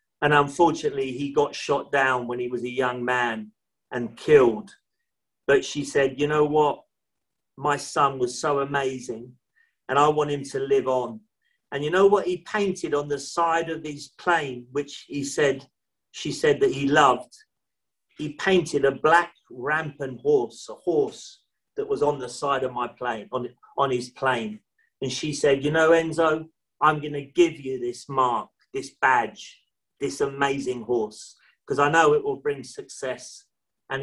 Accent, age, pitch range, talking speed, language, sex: British, 40-59, 130-195 Hz, 175 wpm, English, male